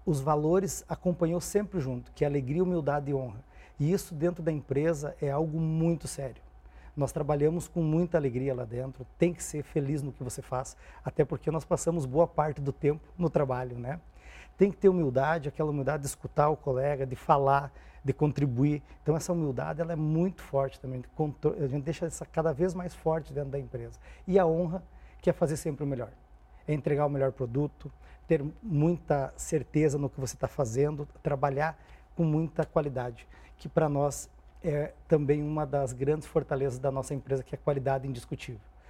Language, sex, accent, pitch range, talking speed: Portuguese, male, Brazilian, 135-165 Hz, 190 wpm